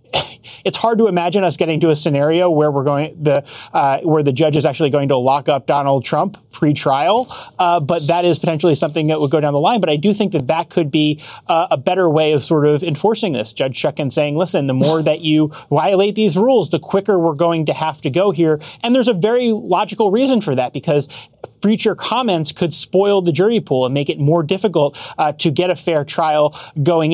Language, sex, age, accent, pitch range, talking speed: English, male, 30-49, American, 145-180 Hz, 230 wpm